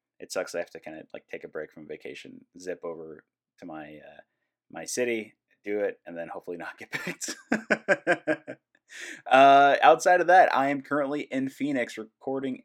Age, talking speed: 30-49, 180 wpm